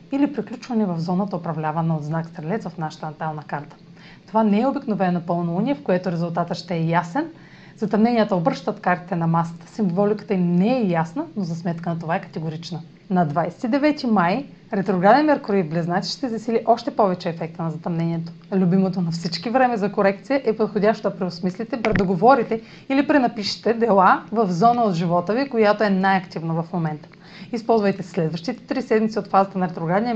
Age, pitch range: 30-49, 170-220 Hz